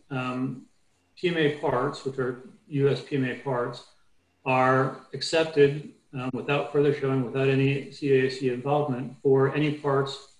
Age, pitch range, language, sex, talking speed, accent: 40-59, 125-140 Hz, English, male, 120 wpm, American